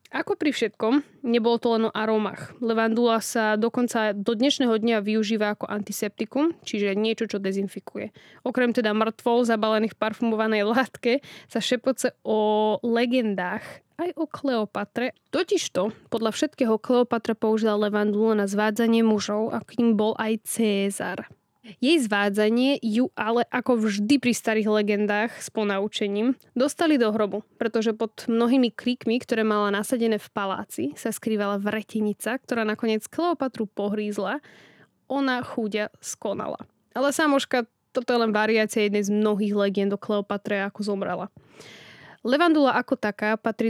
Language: Slovak